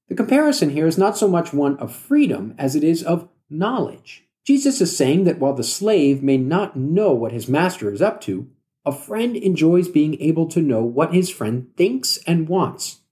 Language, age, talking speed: English, 50-69, 200 wpm